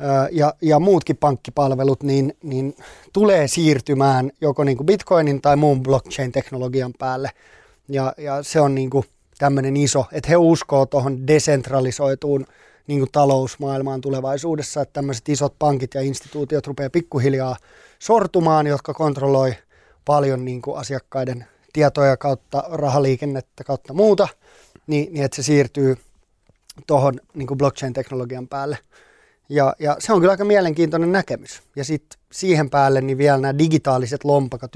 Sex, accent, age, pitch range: male, native, 20-39, 135-150 Hz